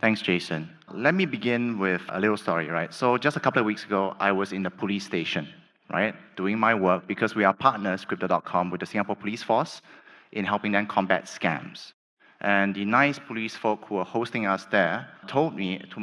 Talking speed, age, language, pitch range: 205 wpm, 30-49, English, 95-125 Hz